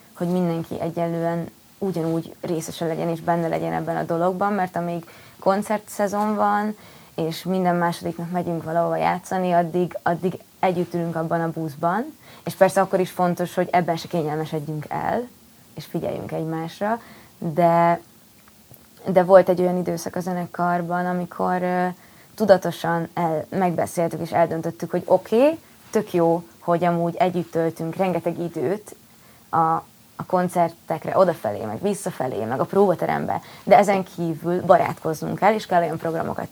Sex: female